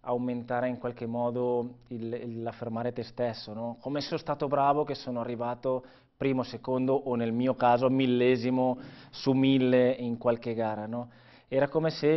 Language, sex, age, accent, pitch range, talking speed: Italian, male, 20-39, native, 120-135 Hz, 170 wpm